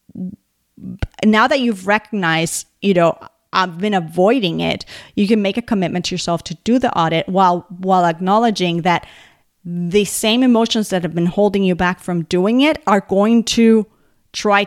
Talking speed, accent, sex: 170 wpm, American, female